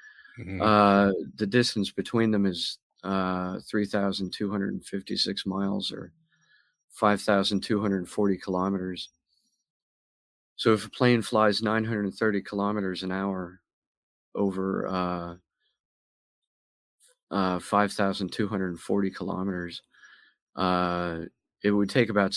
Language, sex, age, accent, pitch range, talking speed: English, male, 50-69, American, 90-105 Hz, 85 wpm